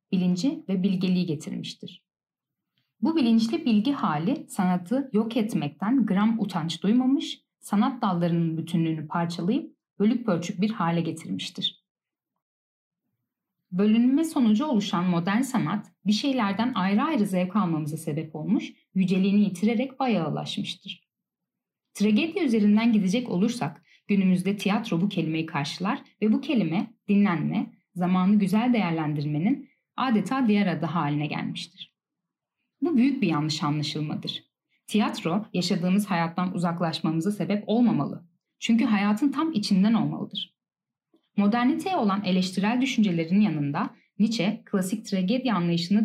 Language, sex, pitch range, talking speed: Turkish, female, 180-230 Hz, 110 wpm